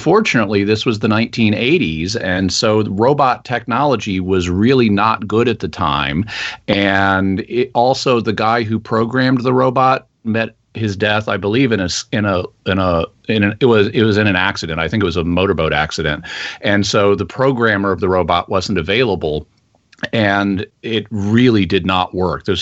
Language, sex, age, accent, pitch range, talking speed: English, male, 40-59, American, 90-110 Hz, 185 wpm